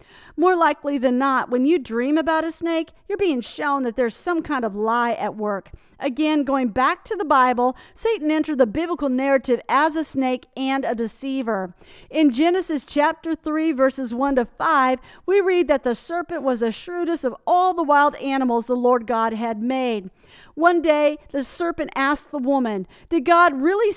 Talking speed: 185 wpm